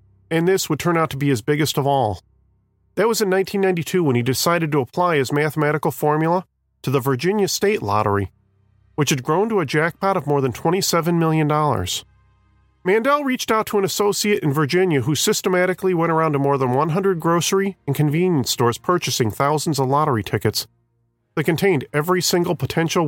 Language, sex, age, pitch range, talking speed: English, male, 40-59, 125-180 Hz, 180 wpm